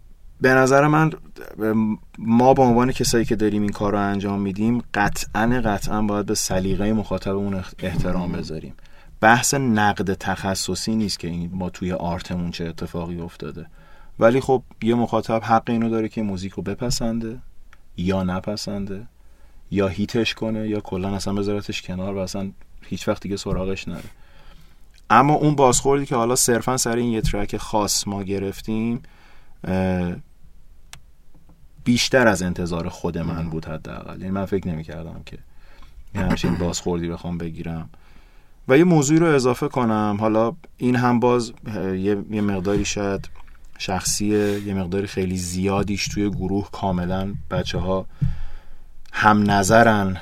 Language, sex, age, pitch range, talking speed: Persian, male, 30-49, 90-115 Hz, 135 wpm